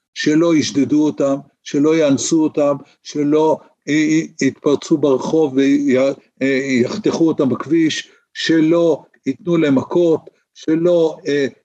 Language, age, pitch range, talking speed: Hebrew, 60-79, 135-170 Hz, 90 wpm